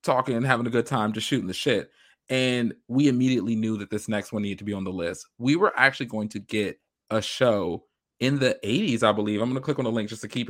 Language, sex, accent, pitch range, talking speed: English, male, American, 105-125 Hz, 270 wpm